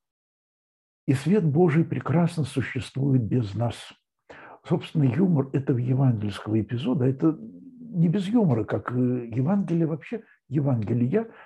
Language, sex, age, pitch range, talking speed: Russian, male, 60-79, 115-175 Hz, 105 wpm